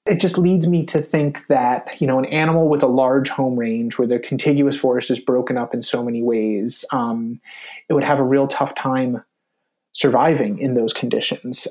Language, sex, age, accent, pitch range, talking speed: English, male, 30-49, American, 125-155 Hz, 200 wpm